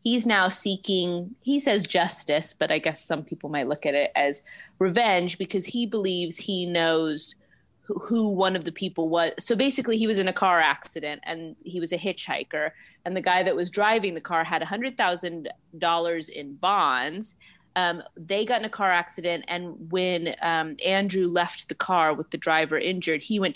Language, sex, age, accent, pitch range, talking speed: English, female, 30-49, American, 155-195 Hz, 195 wpm